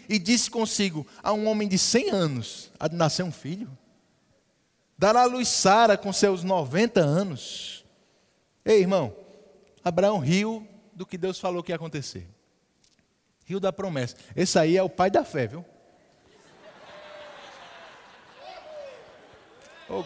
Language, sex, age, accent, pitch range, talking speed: Portuguese, male, 20-39, Brazilian, 175-235 Hz, 135 wpm